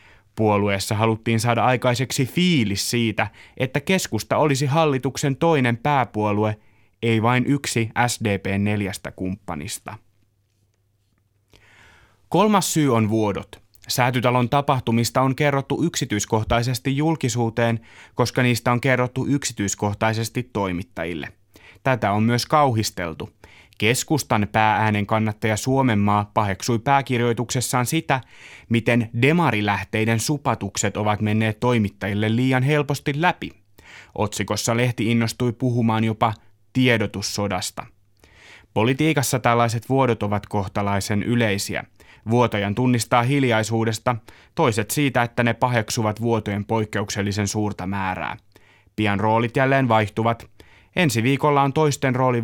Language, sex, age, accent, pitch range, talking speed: Finnish, male, 30-49, native, 105-125 Hz, 100 wpm